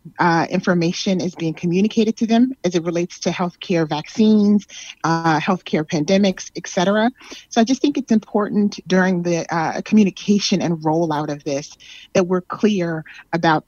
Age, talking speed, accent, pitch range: 30-49, 155 wpm, American, 165-200 Hz